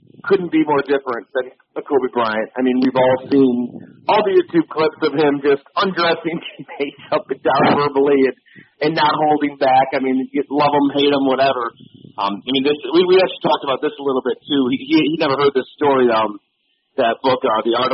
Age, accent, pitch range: 40-59, American, 125-150 Hz